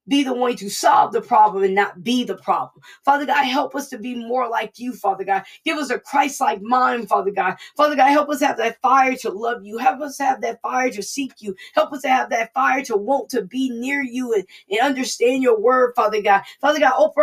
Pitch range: 245-290 Hz